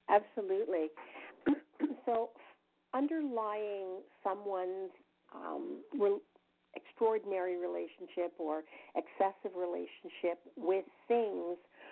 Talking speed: 60 wpm